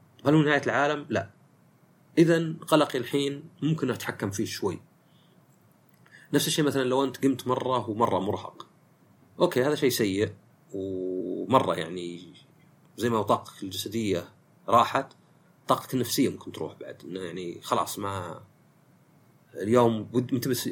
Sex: male